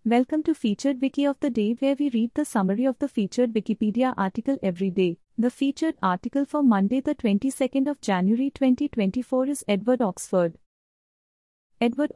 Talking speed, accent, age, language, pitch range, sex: 165 wpm, Indian, 30-49, English, 210-275 Hz, female